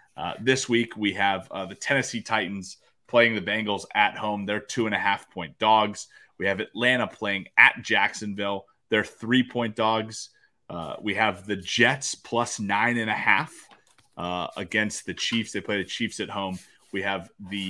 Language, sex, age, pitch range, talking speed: English, male, 30-49, 95-115 Hz, 155 wpm